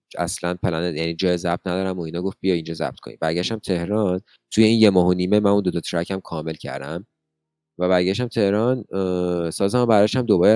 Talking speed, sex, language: 200 wpm, male, Persian